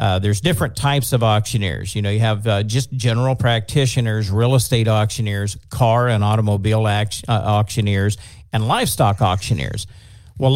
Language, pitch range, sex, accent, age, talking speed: English, 105-130 Hz, male, American, 50-69, 150 wpm